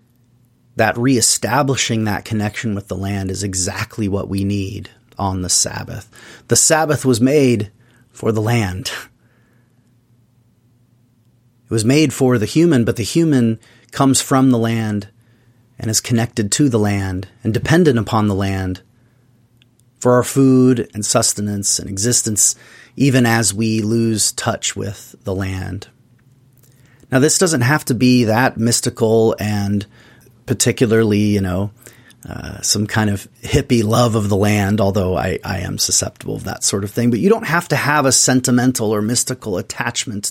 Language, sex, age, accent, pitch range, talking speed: English, male, 30-49, American, 105-125 Hz, 155 wpm